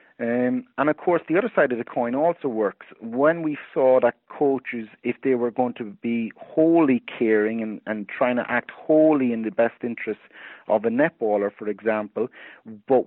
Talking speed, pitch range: 190 wpm, 105-125 Hz